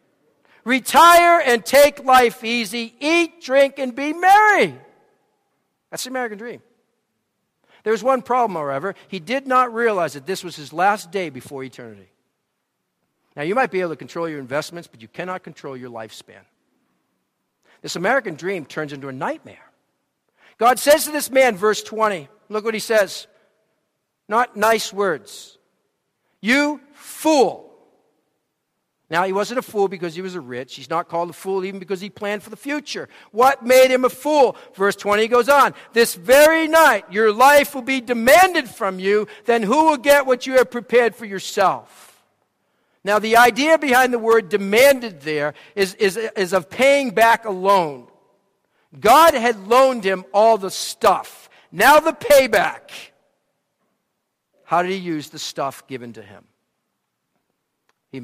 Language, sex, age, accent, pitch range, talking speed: English, male, 50-69, American, 185-265 Hz, 160 wpm